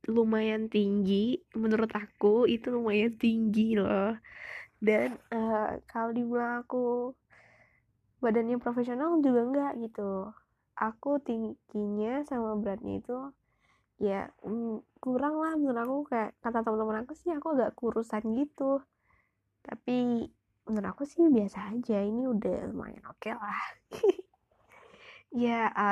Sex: female